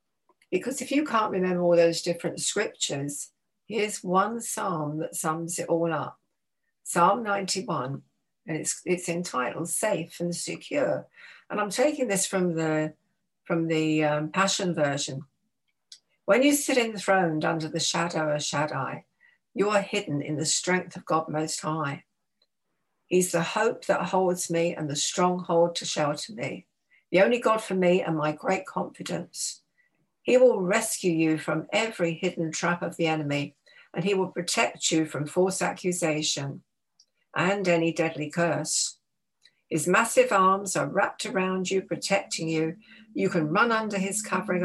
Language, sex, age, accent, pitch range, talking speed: English, female, 60-79, British, 160-195 Hz, 155 wpm